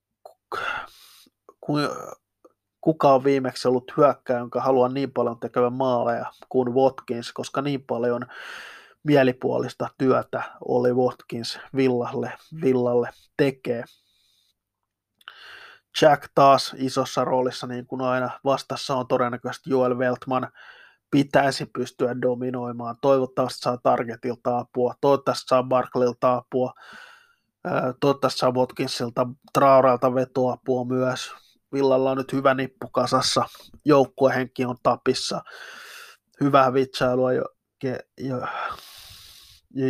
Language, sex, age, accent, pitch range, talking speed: Finnish, male, 20-39, native, 125-135 Hz, 100 wpm